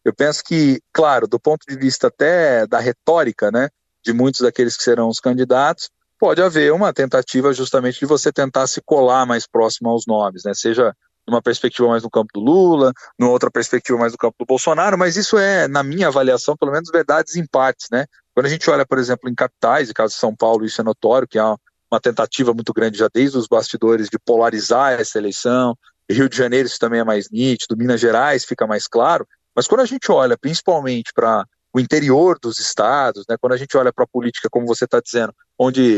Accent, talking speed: Brazilian, 215 wpm